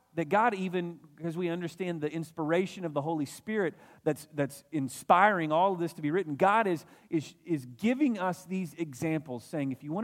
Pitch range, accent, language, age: 140-180 Hz, American, English, 40-59